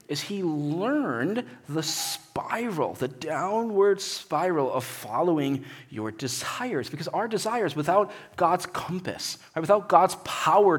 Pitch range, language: 135-175 Hz, English